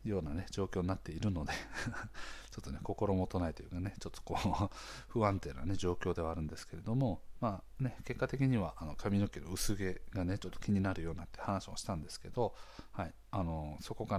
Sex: male